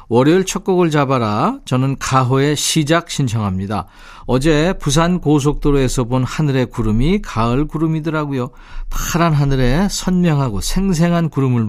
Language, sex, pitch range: Korean, male, 120-170 Hz